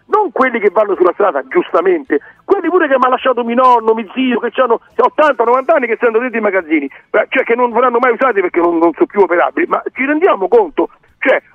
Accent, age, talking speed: native, 50-69, 230 wpm